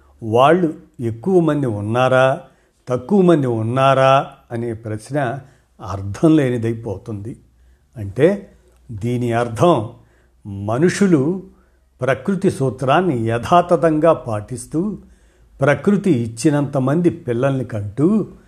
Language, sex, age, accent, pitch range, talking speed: Telugu, male, 50-69, native, 115-150 Hz, 75 wpm